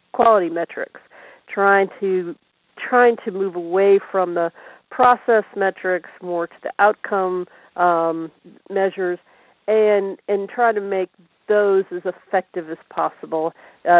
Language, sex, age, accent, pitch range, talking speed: English, female, 50-69, American, 180-220 Hz, 125 wpm